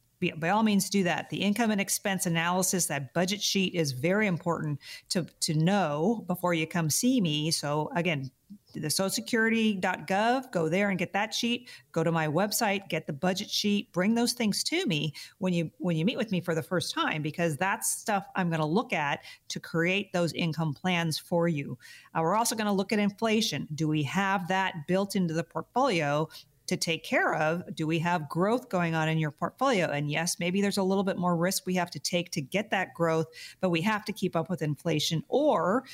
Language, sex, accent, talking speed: English, female, American, 215 wpm